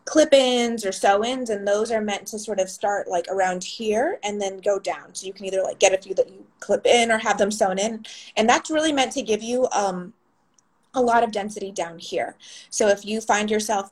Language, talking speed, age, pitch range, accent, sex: English, 235 wpm, 20-39, 190-225 Hz, American, female